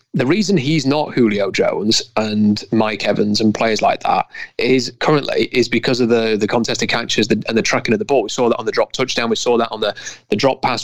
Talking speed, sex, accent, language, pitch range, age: 250 wpm, male, British, English, 110-130 Hz, 30-49